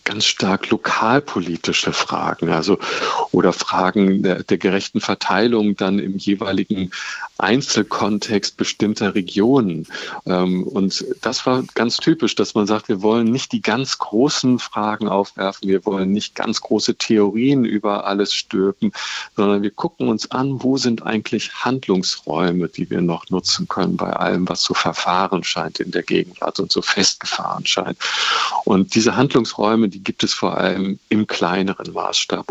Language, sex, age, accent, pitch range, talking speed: German, male, 40-59, German, 95-120 Hz, 150 wpm